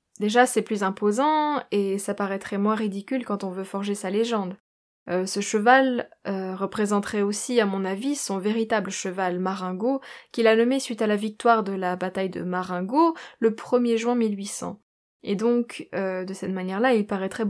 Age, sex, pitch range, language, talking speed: 20-39, female, 195-230 Hz, French, 180 wpm